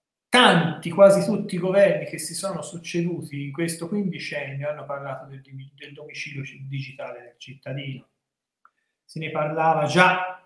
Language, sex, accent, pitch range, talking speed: Italian, male, native, 140-170 Hz, 130 wpm